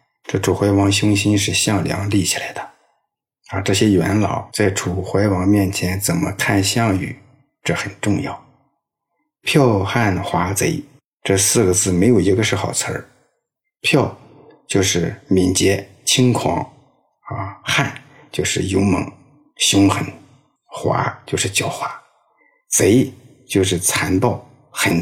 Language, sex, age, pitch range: Chinese, male, 50-69, 95-120 Hz